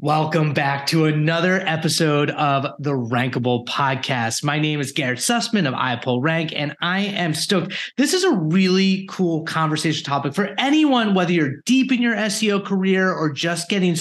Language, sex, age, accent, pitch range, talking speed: English, male, 30-49, American, 145-195 Hz, 170 wpm